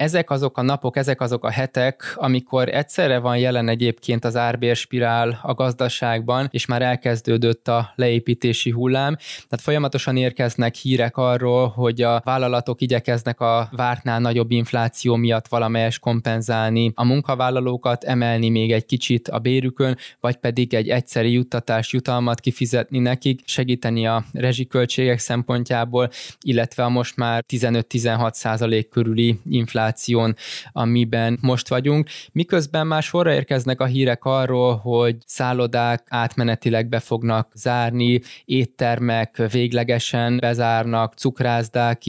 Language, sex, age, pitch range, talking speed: Hungarian, male, 20-39, 115-130 Hz, 125 wpm